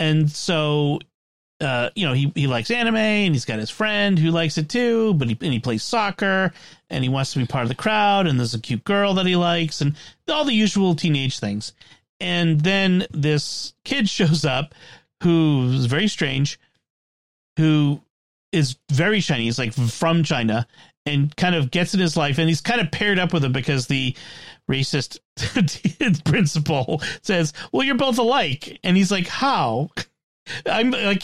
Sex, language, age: male, English, 40-59